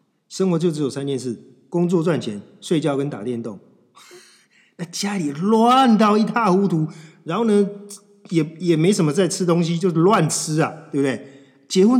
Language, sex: Chinese, male